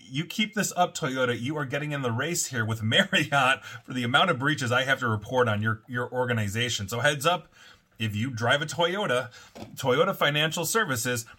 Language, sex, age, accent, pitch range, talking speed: English, male, 30-49, American, 105-135 Hz, 200 wpm